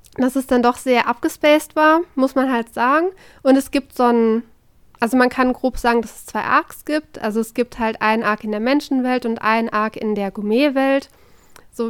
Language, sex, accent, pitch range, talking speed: German, female, German, 230-265 Hz, 210 wpm